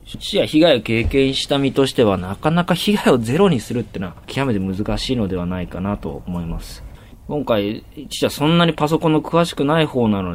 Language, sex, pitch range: Japanese, male, 95-130 Hz